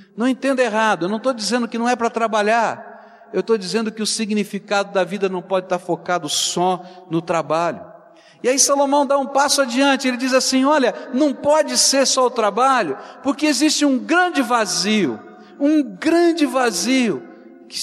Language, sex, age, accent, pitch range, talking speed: Portuguese, male, 60-79, Brazilian, 190-250 Hz, 180 wpm